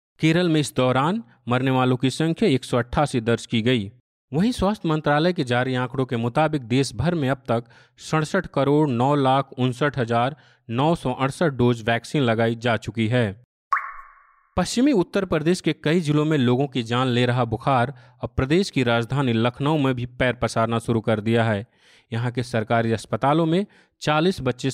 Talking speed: 170 wpm